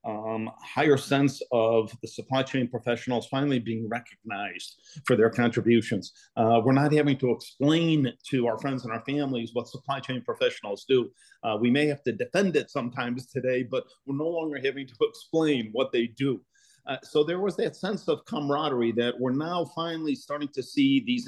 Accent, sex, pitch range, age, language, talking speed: American, male, 120-155 Hz, 40-59, English, 190 wpm